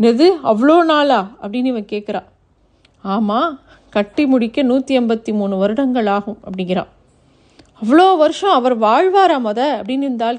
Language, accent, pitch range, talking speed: Tamil, native, 215-260 Hz, 125 wpm